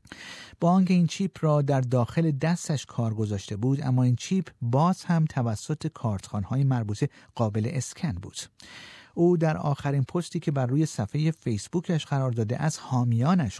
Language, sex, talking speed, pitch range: Persian, male, 155 wpm, 115-160 Hz